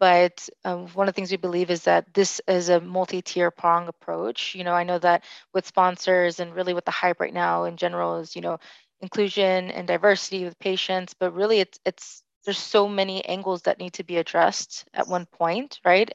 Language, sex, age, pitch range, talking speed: English, female, 20-39, 175-195 Hz, 210 wpm